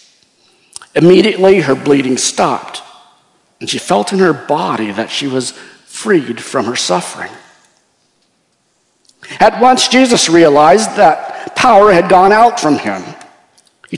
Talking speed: 125 wpm